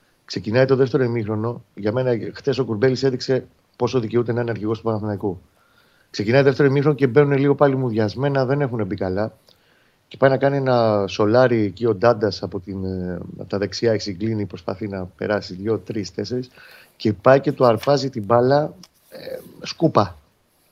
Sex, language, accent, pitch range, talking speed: male, Greek, native, 105-140 Hz, 170 wpm